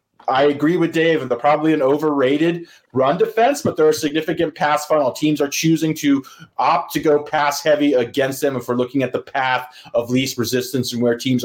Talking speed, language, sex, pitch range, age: 210 wpm, English, male, 125-150 Hz, 30-49